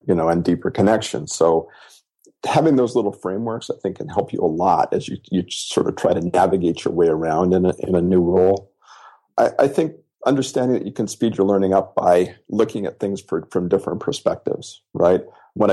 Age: 50-69